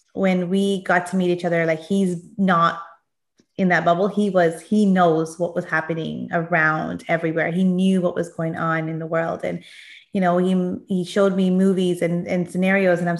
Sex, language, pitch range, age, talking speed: female, English, 180-225 Hz, 20-39, 200 wpm